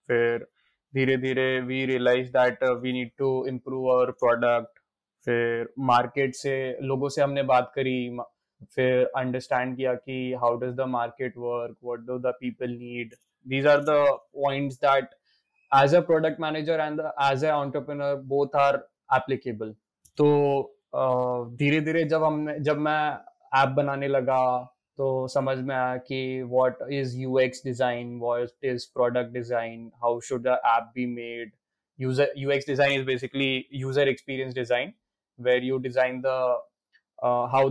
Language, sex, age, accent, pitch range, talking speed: English, male, 20-39, Indian, 125-140 Hz, 130 wpm